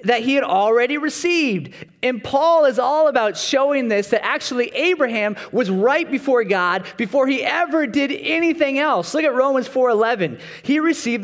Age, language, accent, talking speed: 30-49, English, American, 165 wpm